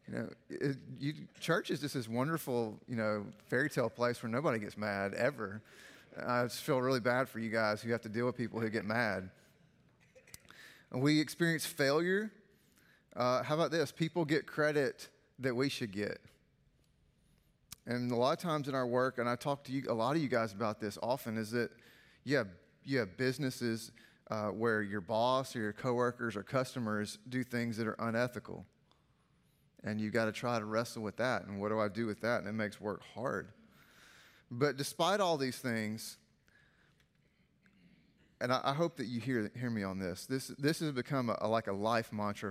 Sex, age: male, 30-49